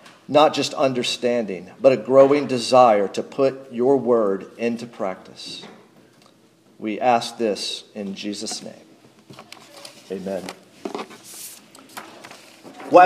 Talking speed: 95 wpm